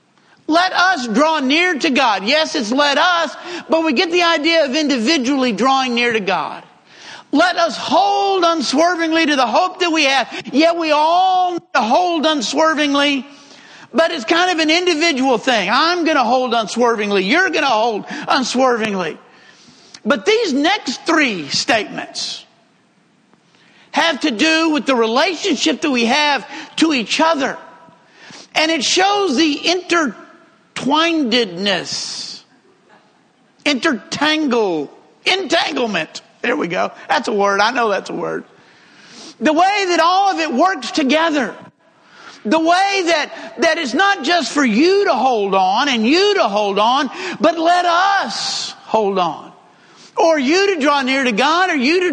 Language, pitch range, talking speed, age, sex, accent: English, 260-340 Hz, 150 wpm, 50-69, male, American